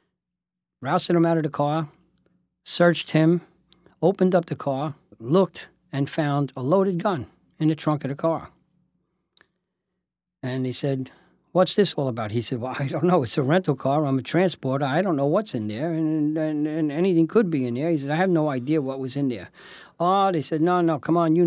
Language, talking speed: English, 210 wpm